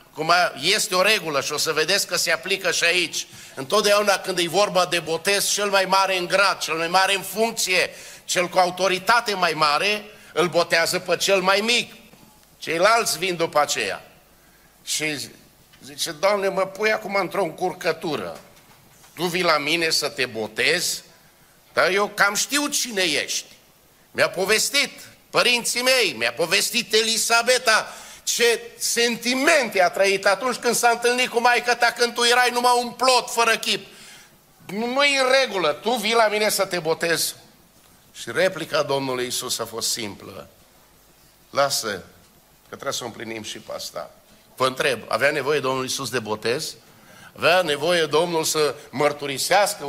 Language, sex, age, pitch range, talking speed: Romanian, male, 50-69, 155-220 Hz, 155 wpm